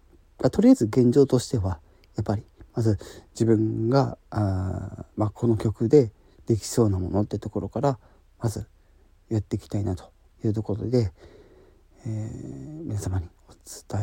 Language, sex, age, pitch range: Japanese, male, 40-59, 95-120 Hz